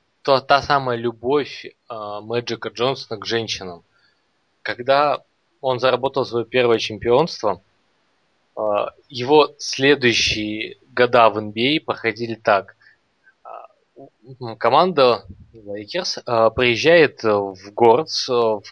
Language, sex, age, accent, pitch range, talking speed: Russian, male, 20-39, native, 110-130 Hz, 105 wpm